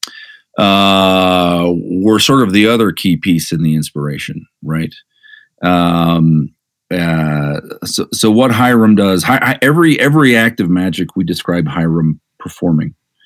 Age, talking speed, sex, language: 40-59, 130 wpm, male, English